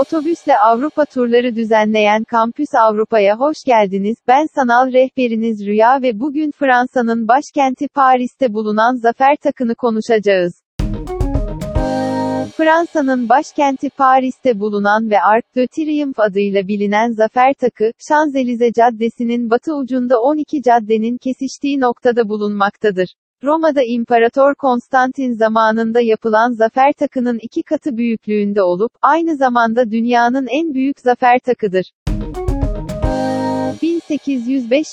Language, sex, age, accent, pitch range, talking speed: Turkish, female, 40-59, native, 220-270 Hz, 105 wpm